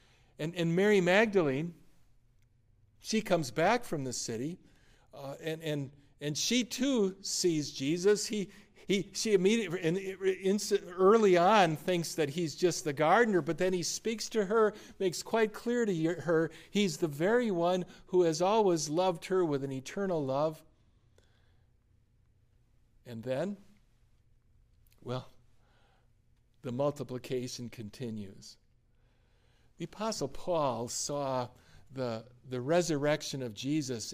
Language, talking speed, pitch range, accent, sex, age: English, 125 wpm, 120-180 Hz, American, male, 50-69